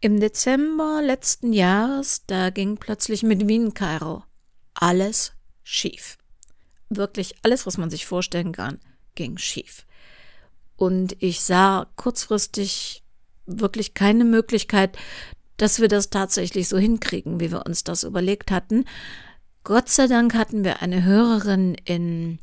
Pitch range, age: 180-225 Hz, 50-69